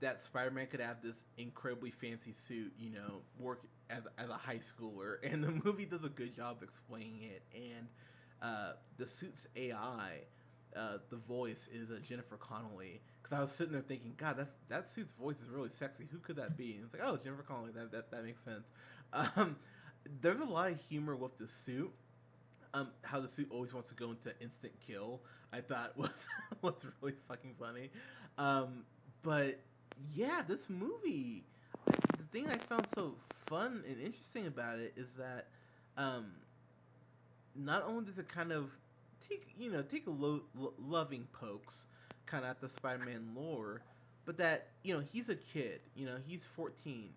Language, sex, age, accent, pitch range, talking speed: English, male, 20-39, American, 115-145 Hz, 185 wpm